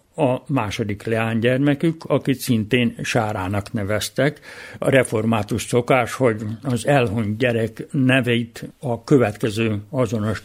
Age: 60-79